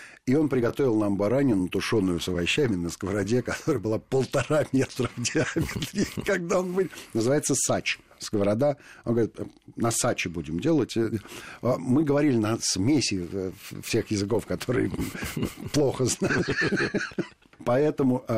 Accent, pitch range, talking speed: native, 100-130 Hz, 125 wpm